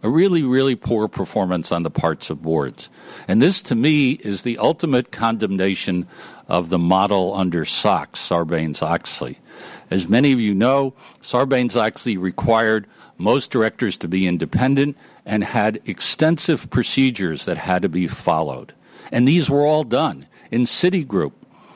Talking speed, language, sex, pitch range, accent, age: 145 wpm, English, male, 95-130 Hz, American, 60-79